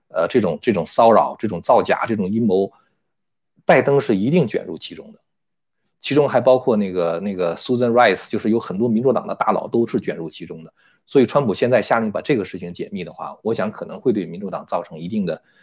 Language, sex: Chinese, male